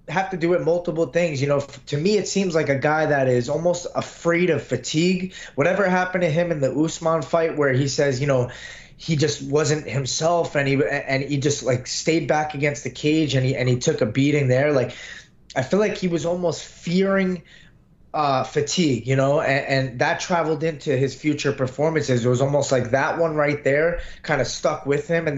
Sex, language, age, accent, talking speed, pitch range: male, English, 20-39, American, 215 wpm, 135-165 Hz